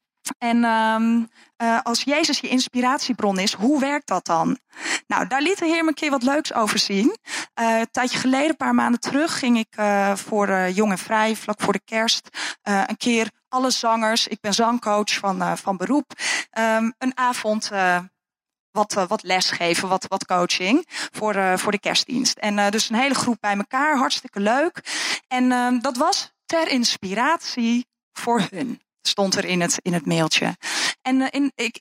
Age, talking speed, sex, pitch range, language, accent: 20-39, 175 wpm, female, 205-270 Hz, Dutch, Dutch